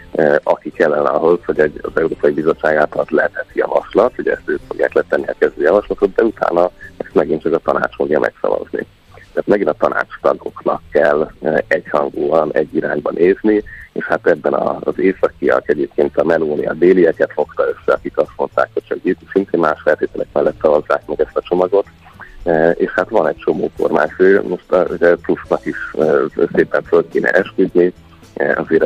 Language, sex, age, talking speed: Hungarian, male, 30-49, 165 wpm